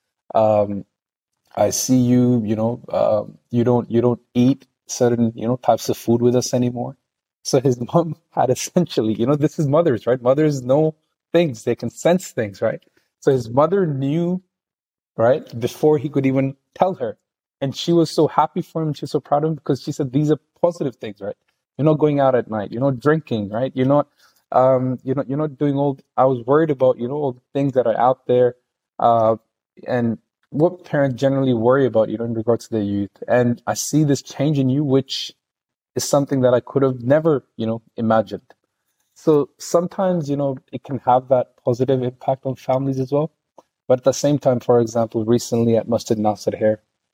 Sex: male